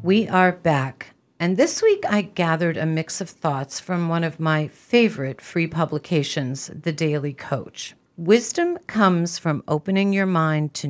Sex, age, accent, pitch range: female, 50-69, American, 145-180 Hz